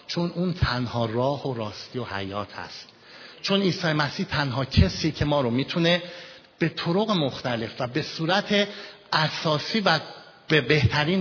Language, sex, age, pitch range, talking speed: Persian, male, 50-69, 115-180 Hz, 150 wpm